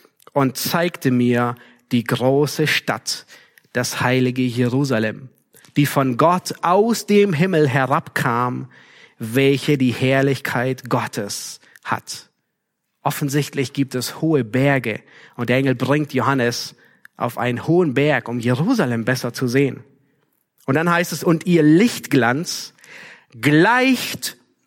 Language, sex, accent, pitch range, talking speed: German, male, German, 135-190 Hz, 115 wpm